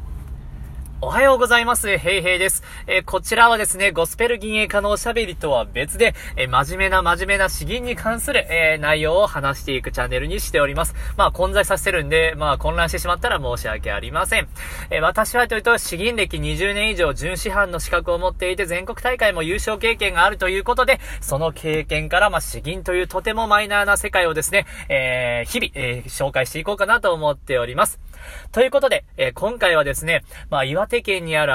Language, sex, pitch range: Japanese, male, 140-210 Hz